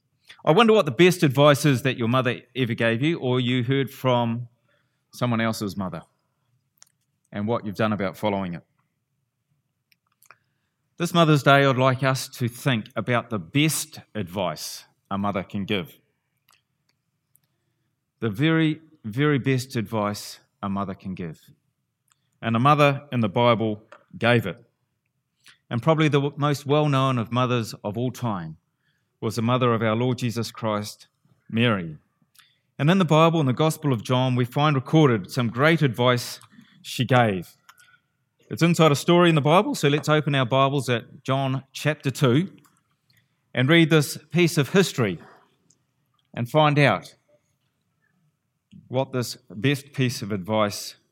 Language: English